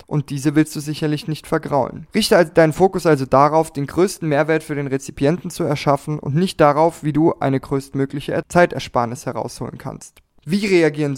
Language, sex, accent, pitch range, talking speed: German, male, German, 140-165 Hz, 170 wpm